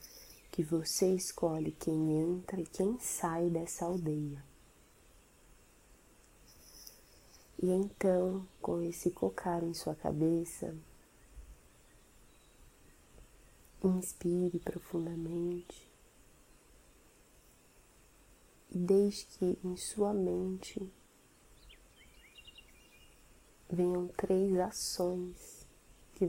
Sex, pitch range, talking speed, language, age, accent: female, 155-180 Hz, 70 wpm, Portuguese, 20-39, Brazilian